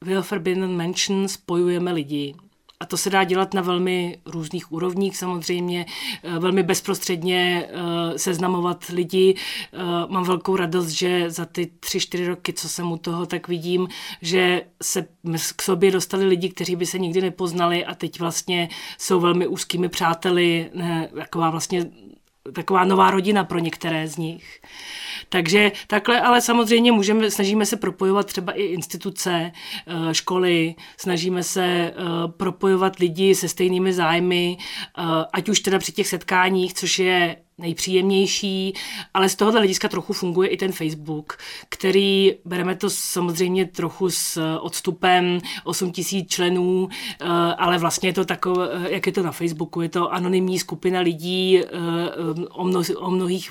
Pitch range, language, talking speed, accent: 175-195 Hz, Czech, 140 wpm, native